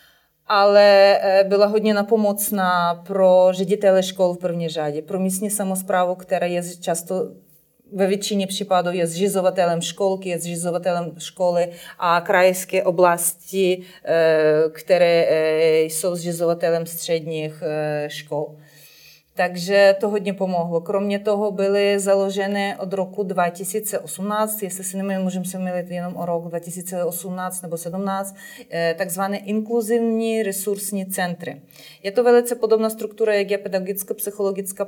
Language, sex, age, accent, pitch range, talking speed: Czech, female, 30-49, native, 170-200 Hz, 115 wpm